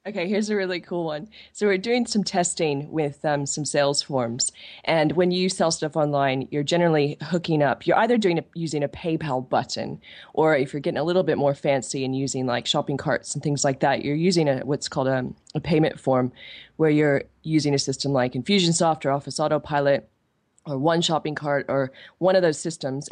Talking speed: 210 wpm